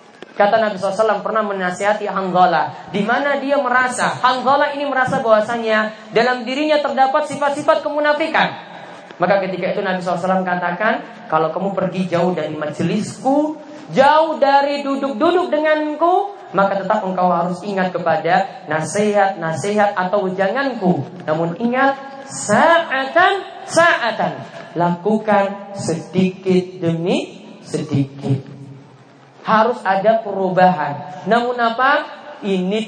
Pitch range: 180-255 Hz